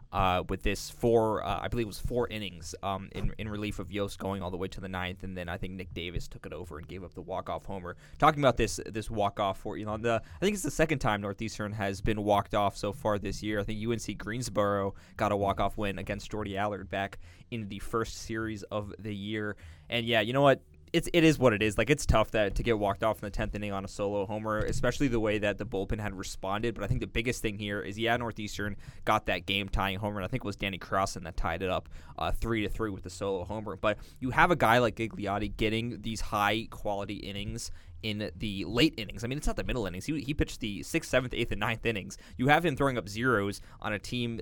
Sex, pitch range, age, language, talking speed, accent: male, 95-115 Hz, 20-39, English, 260 wpm, American